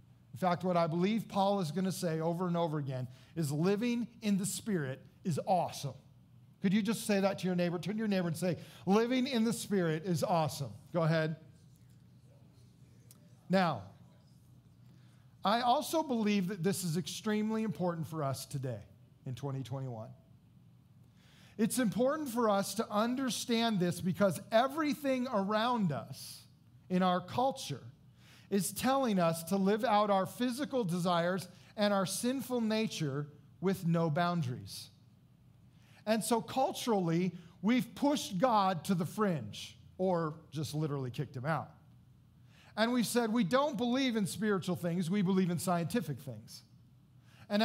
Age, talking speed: 40-59, 145 wpm